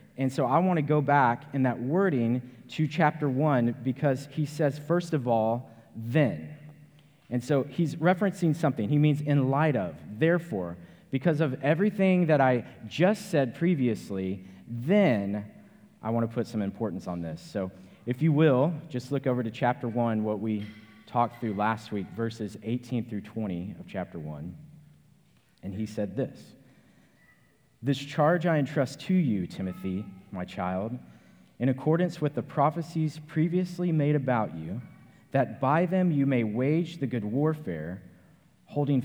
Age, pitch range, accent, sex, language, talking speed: 30-49, 110-150 Hz, American, male, English, 160 wpm